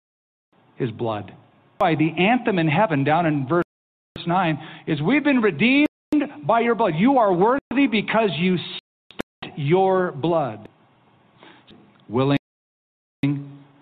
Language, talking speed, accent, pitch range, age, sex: English, 115 wpm, American, 125-180 Hz, 50-69, male